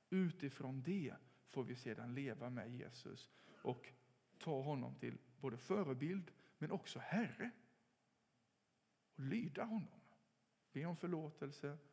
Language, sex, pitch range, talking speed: English, male, 135-175 Hz, 115 wpm